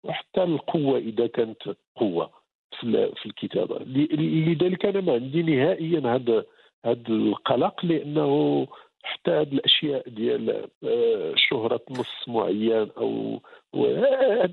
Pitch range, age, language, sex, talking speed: 130-195 Hz, 50-69, English, male, 105 wpm